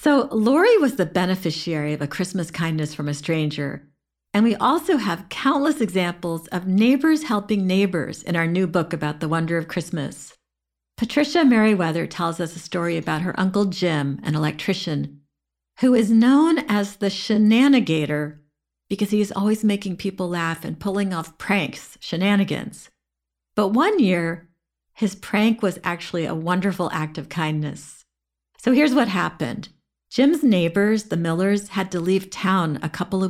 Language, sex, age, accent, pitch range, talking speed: English, female, 50-69, American, 160-205 Hz, 160 wpm